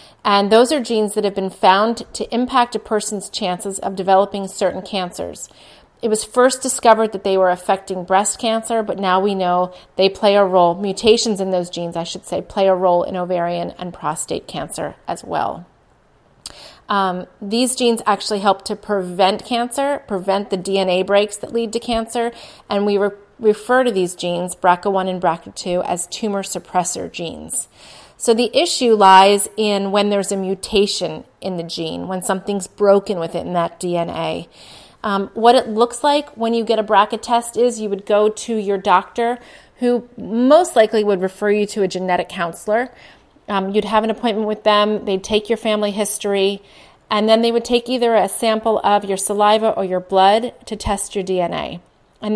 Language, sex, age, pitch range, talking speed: English, female, 30-49, 190-225 Hz, 180 wpm